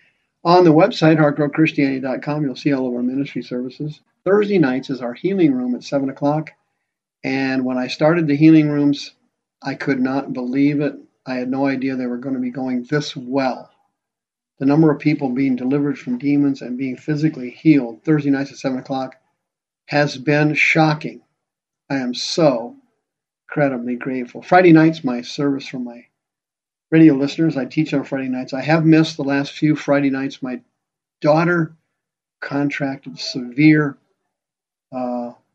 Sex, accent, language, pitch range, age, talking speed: male, American, English, 130-155 Hz, 50-69, 160 wpm